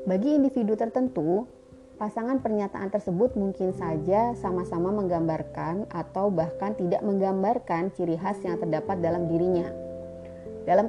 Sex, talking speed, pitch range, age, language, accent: female, 115 wpm, 160-210 Hz, 30-49, Indonesian, native